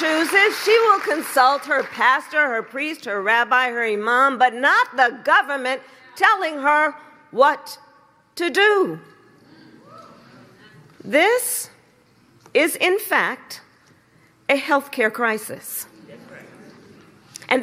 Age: 40-59